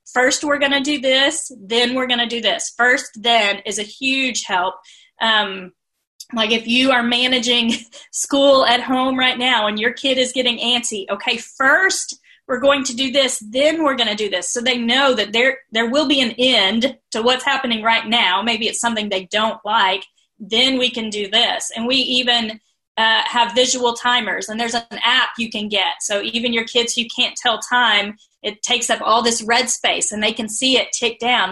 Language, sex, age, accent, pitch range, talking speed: English, female, 30-49, American, 220-265 Hz, 210 wpm